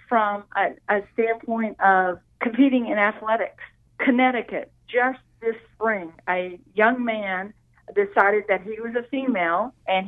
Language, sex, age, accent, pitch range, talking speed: English, female, 50-69, American, 210-265 Hz, 130 wpm